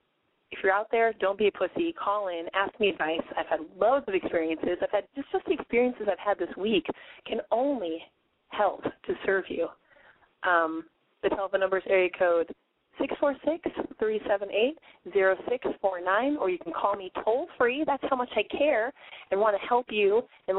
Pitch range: 195-280 Hz